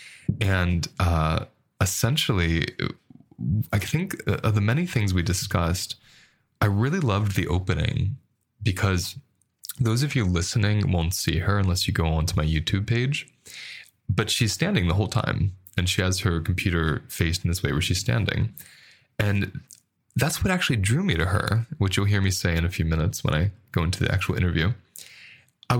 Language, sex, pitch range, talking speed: English, male, 90-120 Hz, 170 wpm